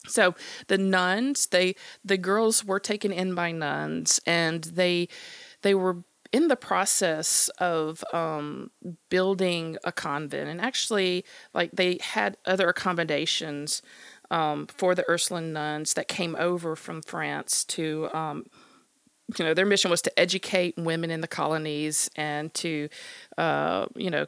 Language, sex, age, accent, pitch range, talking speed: English, female, 40-59, American, 155-190 Hz, 145 wpm